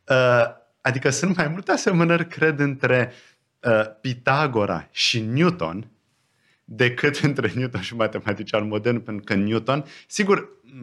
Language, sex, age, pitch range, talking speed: Romanian, male, 30-49, 100-135 Hz, 115 wpm